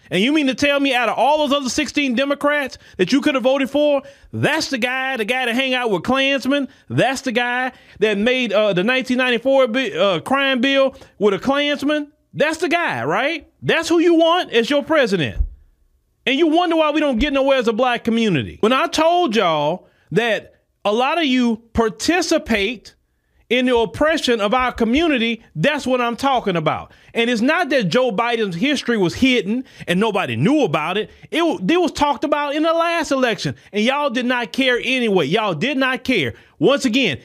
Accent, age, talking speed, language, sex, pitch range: American, 30-49, 195 wpm, English, male, 220-285 Hz